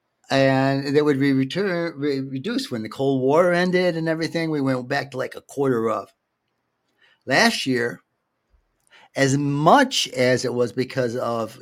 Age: 50-69